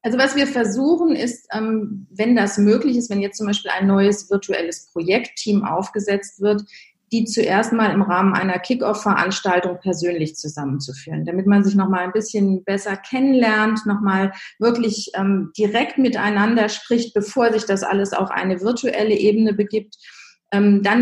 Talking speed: 150 wpm